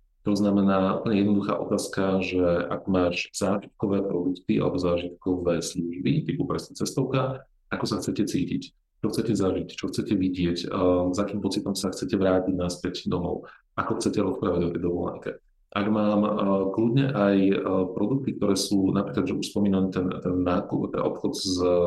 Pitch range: 90-105 Hz